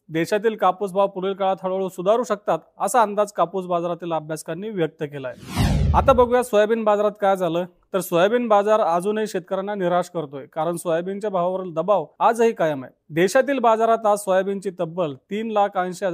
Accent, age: native, 40-59